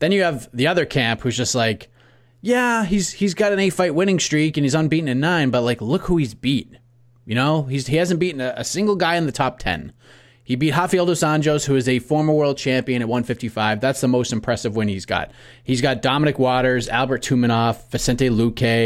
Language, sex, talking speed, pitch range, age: English, male, 225 wpm, 115-150 Hz, 30-49